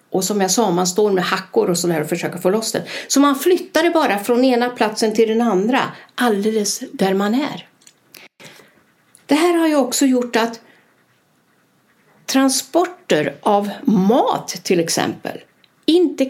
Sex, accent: female, native